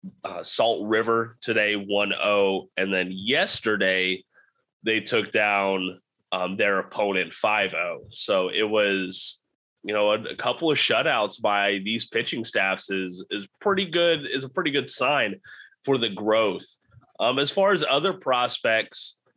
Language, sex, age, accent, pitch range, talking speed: English, male, 20-39, American, 100-135 Hz, 145 wpm